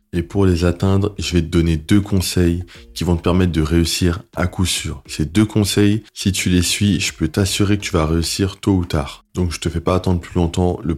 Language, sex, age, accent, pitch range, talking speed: French, male, 20-39, French, 80-95 Hz, 250 wpm